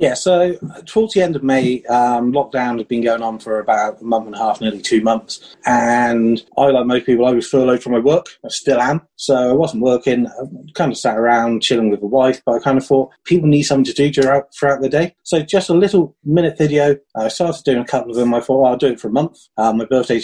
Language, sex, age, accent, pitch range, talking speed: English, male, 30-49, British, 115-140 Hz, 265 wpm